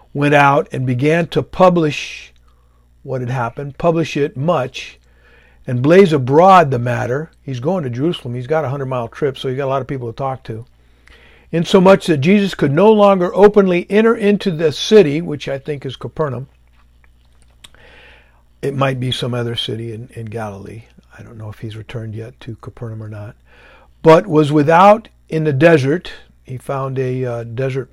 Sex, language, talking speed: male, English, 180 wpm